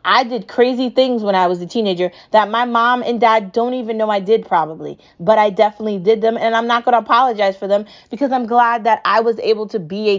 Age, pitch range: 30-49, 195-240 Hz